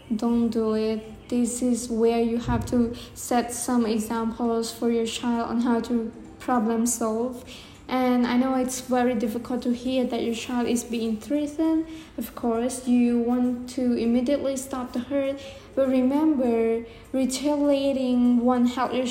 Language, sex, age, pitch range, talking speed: English, female, 20-39, 235-260 Hz, 155 wpm